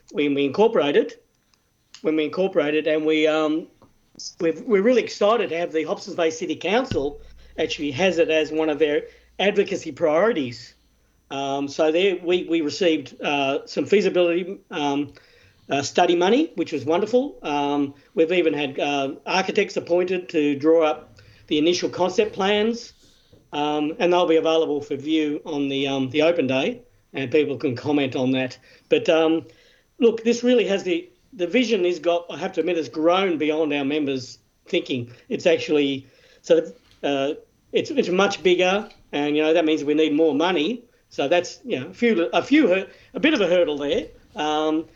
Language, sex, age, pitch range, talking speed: English, male, 50-69, 145-185 Hz, 175 wpm